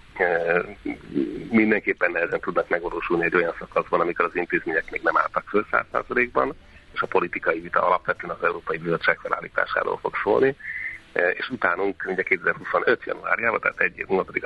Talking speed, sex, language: 155 wpm, male, Hungarian